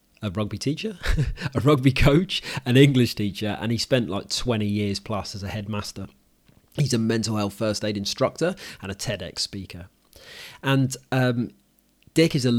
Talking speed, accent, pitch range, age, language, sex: 165 wpm, British, 105-125 Hz, 30-49, English, male